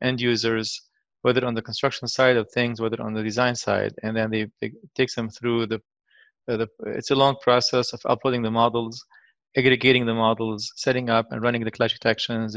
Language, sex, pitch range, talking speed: English, male, 115-125 Hz, 190 wpm